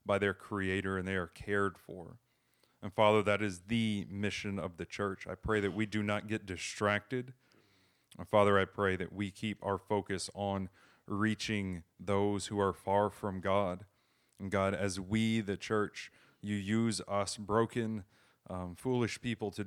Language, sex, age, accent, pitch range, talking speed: English, male, 30-49, American, 95-105 Hz, 170 wpm